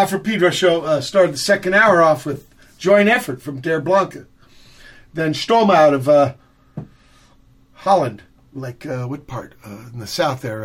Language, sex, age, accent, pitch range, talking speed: English, male, 50-69, American, 125-160 Hz, 170 wpm